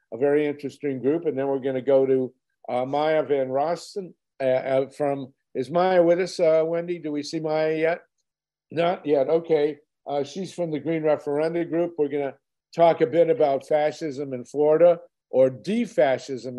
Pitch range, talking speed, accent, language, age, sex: 130-165 Hz, 175 wpm, American, English, 50-69, male